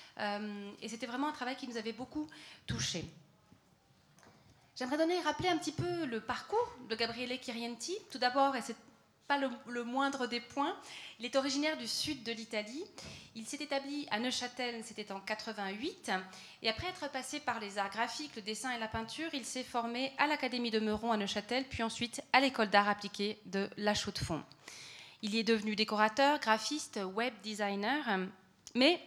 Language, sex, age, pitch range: French, female, 30-49, 215-275 Hz